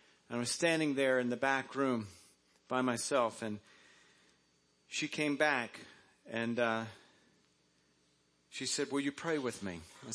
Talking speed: 150 wpm